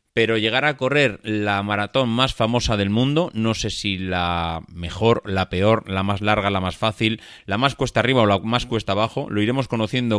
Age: 30-49